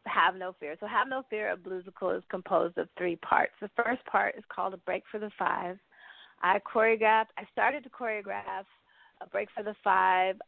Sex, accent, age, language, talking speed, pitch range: female, American, 20-39, English, 200 wpm, 180-210 Hz